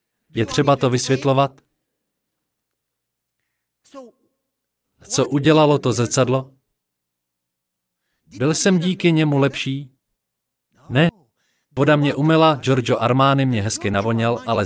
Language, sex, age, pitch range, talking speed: Slovak, male, 40-59, 120-160 Hz, 95 wpm